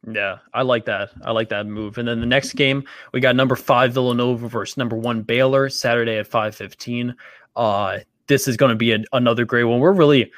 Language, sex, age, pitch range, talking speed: English, male, 20-39, 110-130 Hz, 215 wpm